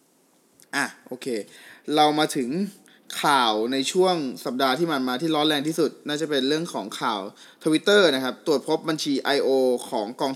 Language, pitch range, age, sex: Thai, 135-175 Hz, 20-39, male